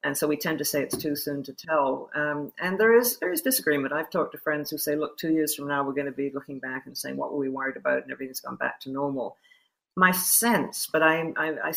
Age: 50-69